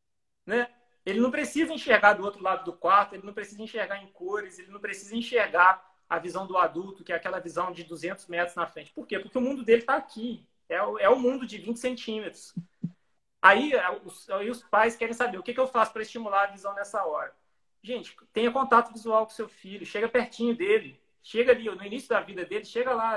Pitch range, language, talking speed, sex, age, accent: 180-230 Hz, Portuguese, 220 wpm, male, 30-49, Brazilian